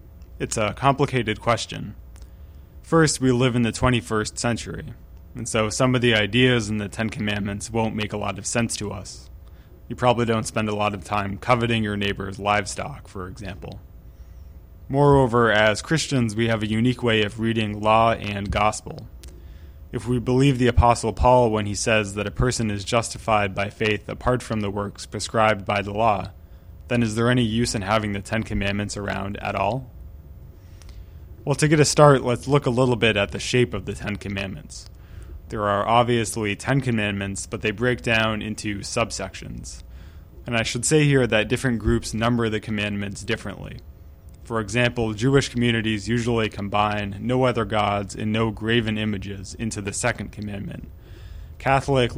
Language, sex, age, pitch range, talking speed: English, male, 20-39, 100-120 Hz, 175 wpm